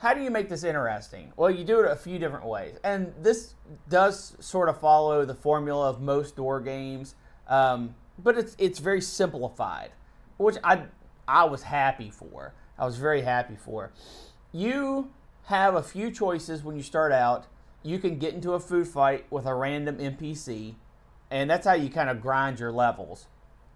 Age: 30-49